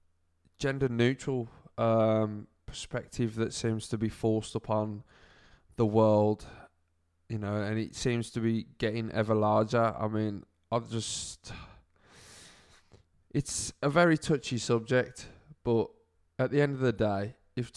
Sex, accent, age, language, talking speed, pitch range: male, British, 20-39, English, 125 wpm, 105-125 Hz